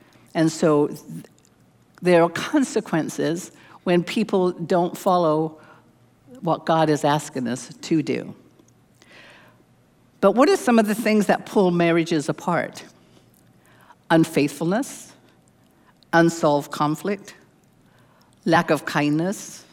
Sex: female